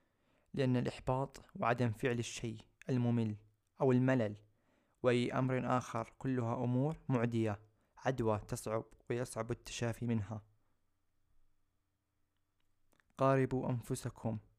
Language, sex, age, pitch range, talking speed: Arabic, male, 20-39, 110-125 Hz, 85 wpm